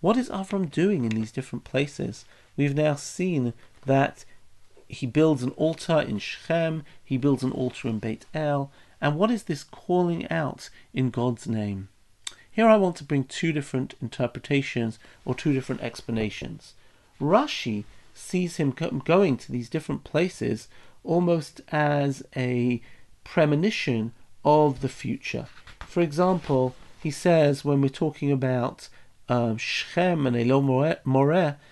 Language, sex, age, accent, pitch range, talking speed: English, male, 40-59, British, 125-165 Hz, 140 wpm